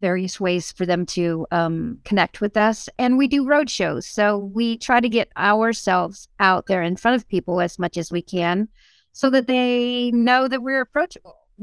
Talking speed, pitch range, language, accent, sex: 195 wpm, 175-220 Hz, English, American, female